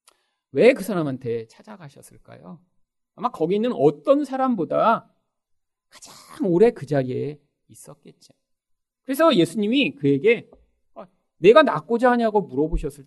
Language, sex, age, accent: Korean, male, 40-59, native